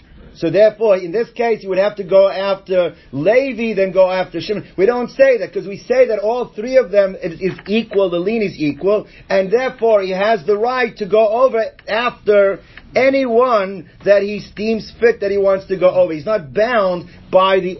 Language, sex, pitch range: English, male, 175-225 Hz